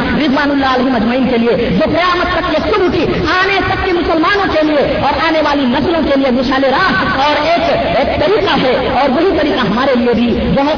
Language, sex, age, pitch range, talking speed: Urdu, female, 40-59, 250-335 Hz, 85 wpm